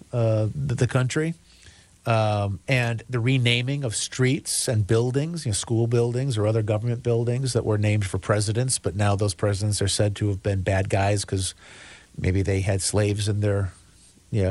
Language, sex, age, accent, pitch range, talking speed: English, male, 40-59, American, 105-130 Hz, 180 wpm